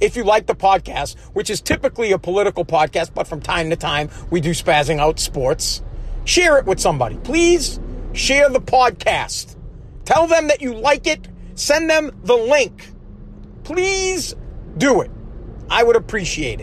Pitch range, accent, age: 175-260 Hz, American, 40-59